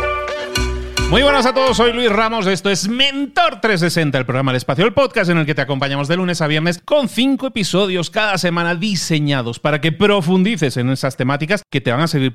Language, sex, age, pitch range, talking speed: Spanish, male, 30-49, 125-170 Hz, 210 wpm